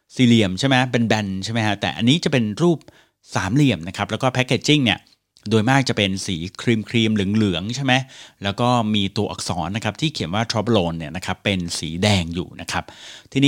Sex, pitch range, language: male, 100-130 Hz, Thai